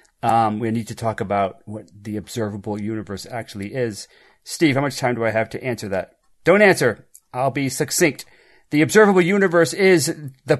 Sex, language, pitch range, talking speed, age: male, English, 120-160 Hz, 180 wpm, 40-59